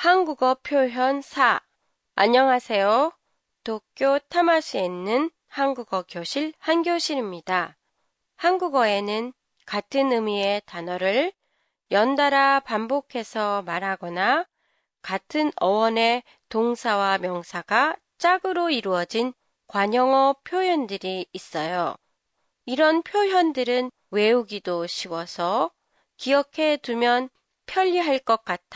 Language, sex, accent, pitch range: Japanese, female, Korean, 200-300 Hz